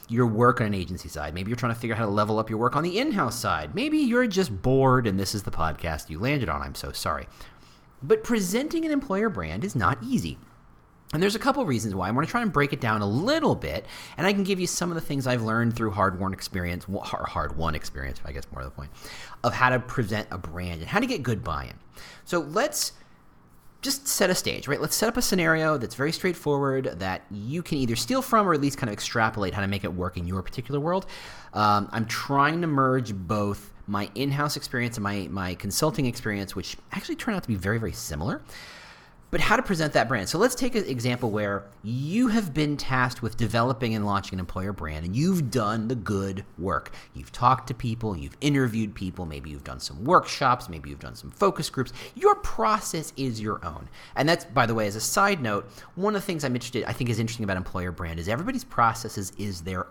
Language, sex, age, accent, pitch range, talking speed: English, male, 30-49, American, 95-145 Hz, 235 wpm